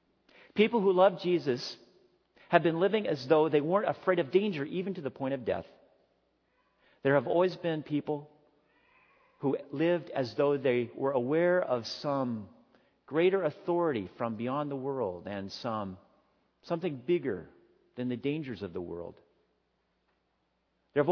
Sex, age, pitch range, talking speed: male, 50-69, 145-190 Hz, 145 wpm